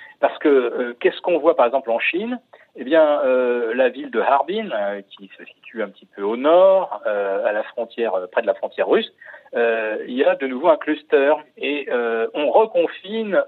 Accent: French